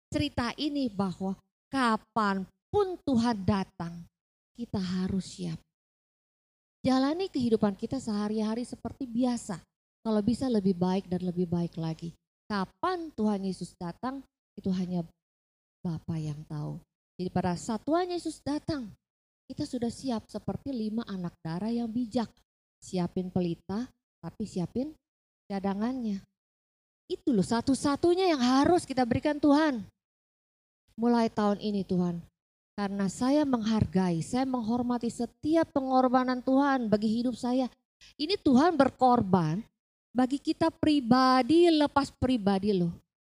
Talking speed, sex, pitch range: 115 wpm, female, 190-275 Hz